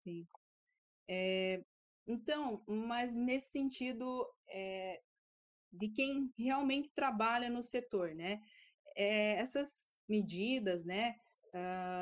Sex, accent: female, Brazilian